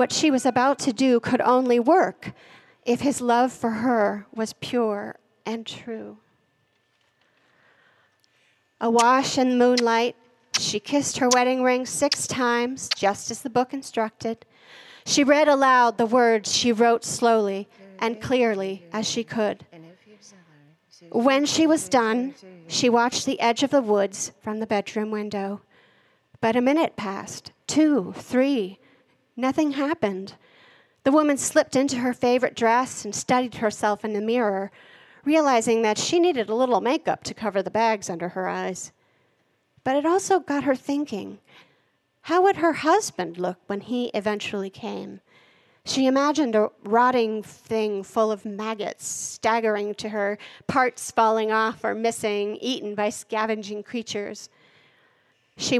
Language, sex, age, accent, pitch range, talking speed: English, female, 40-59, American, 210-260 Hz, 140 wpm